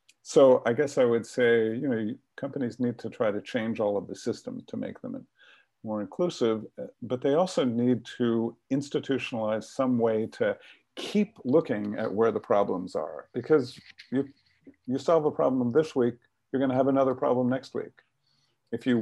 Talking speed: 175 wpm